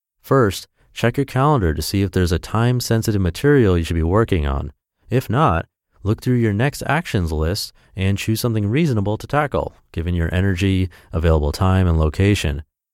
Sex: male